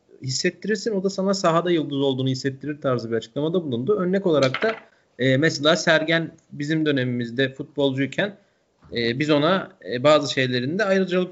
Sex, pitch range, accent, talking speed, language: male, 125-175 Hz, native, 150 wpm, Turkish